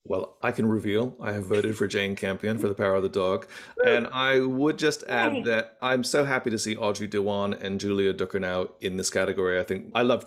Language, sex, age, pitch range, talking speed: English, male, 30-49, 95-125 Hz, 235 wpm